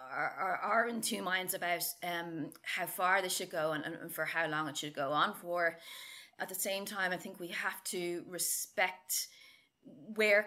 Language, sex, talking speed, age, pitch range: English, female, 190 wpm, 30-49, 165-185 Hz